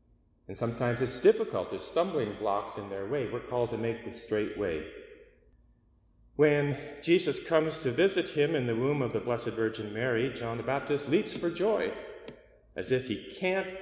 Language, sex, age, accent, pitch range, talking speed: English, male, 30-49, American, 100-140 Hz, 180 wpm